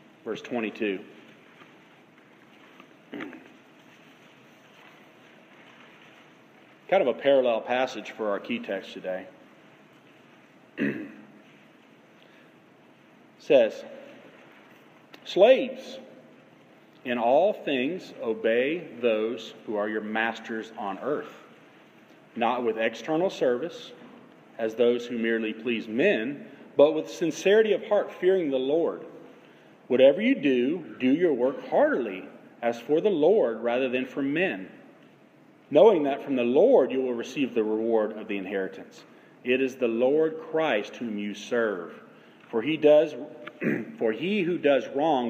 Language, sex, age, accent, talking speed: English, male, 40-59, American, 115 wpm